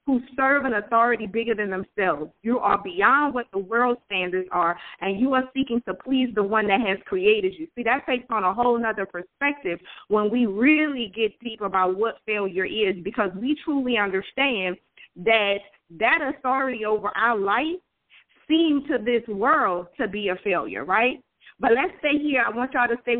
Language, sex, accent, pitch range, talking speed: English, female, American, 205-265 Hz, 190 wpm